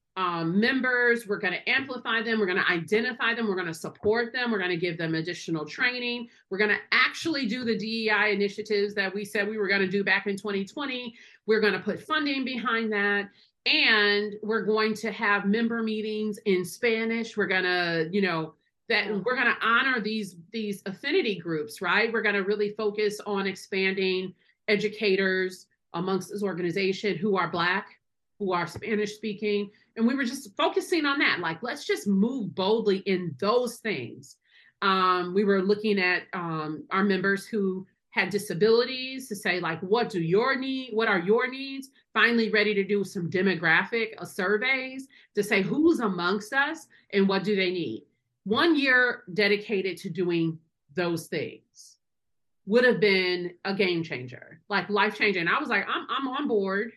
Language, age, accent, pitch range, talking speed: English, 40-59, American, 190-225 Hz, 180 wpm